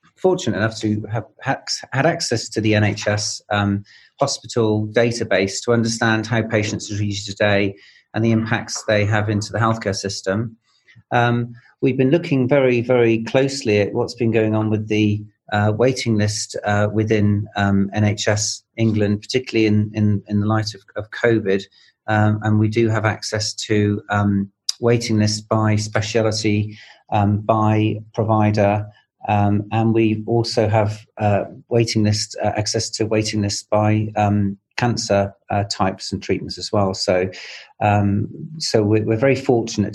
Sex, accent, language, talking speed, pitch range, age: male, British, English, 155 wpm, 105-115 Hz, 40-59